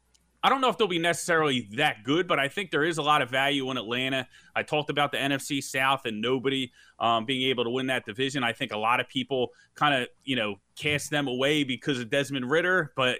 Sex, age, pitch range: male, 30-49, 125-155 Hz